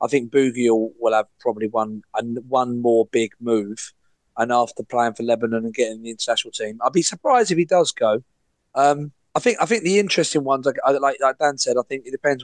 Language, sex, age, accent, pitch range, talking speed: English, male, 30-49, British, 115-150 Hz, 215 wpm